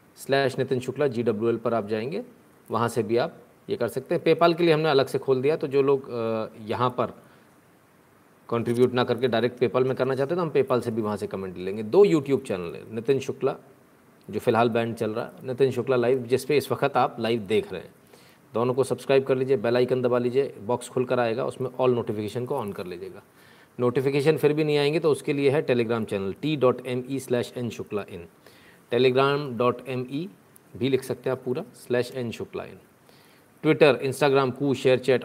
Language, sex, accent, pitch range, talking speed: Hindi, male, native, 120-140 Hz, 200 wpm